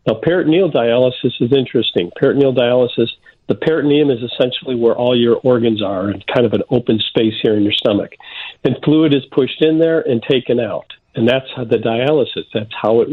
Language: English